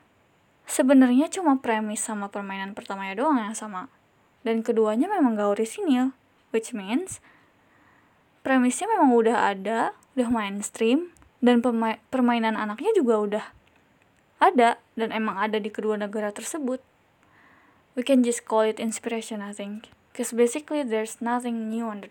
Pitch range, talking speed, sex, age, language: 220-250 Hz, 140 wpm, female, 10-29, Indonesian